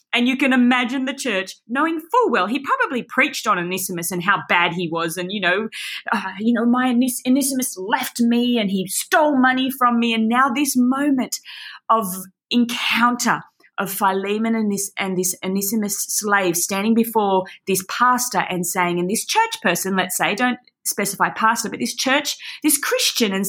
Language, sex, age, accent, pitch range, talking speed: English, female, 30-49, Australian, 205-285 Hz, 180 wpm